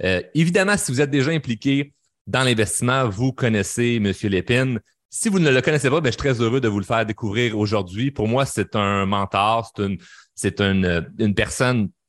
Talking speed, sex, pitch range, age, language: 205 wpm, male, 105-135 Hz, 30-49, French